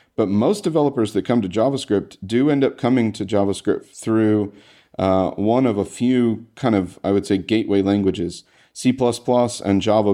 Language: English